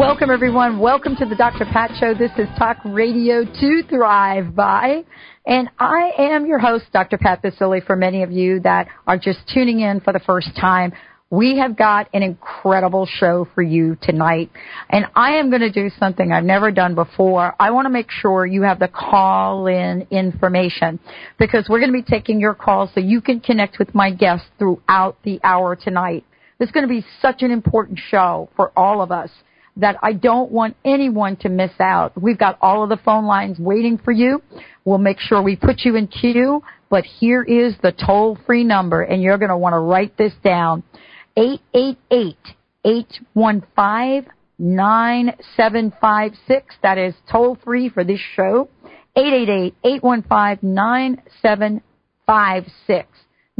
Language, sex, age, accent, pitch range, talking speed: English, female, 40-59, American, 185-240 Hz, 165 wpm